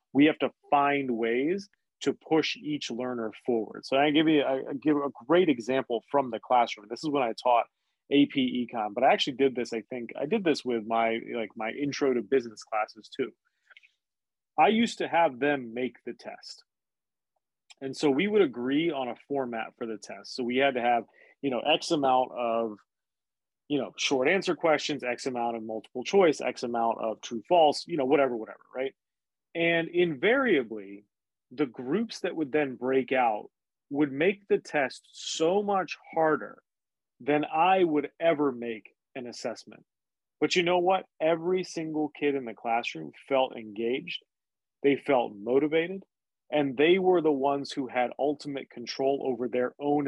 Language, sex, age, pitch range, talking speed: English, male, 30-49, 120-155 Hz, 175 wpm